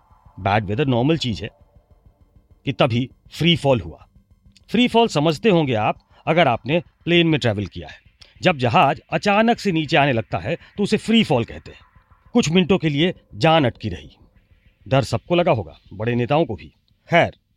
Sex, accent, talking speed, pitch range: male, Indian, 180 wpm, 115-180 Hz